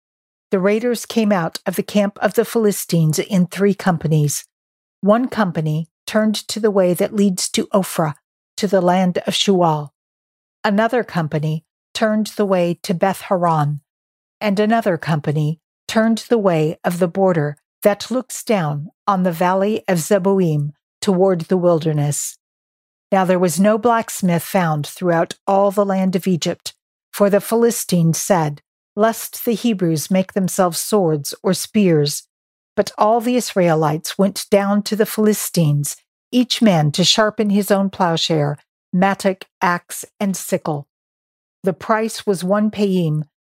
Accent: American